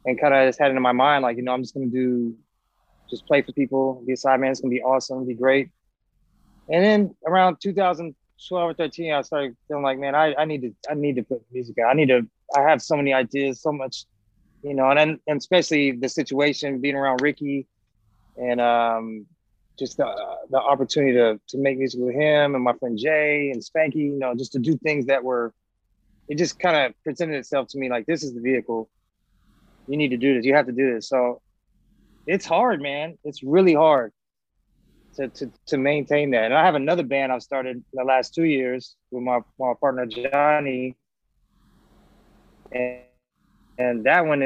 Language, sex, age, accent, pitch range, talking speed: English, male, 20-39, American, 125-145 Hz, 210 wpm